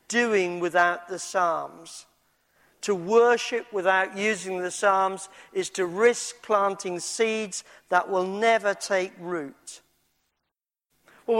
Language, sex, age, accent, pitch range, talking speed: English, male, 50-69, British, 175-225 Hz, 110 wpm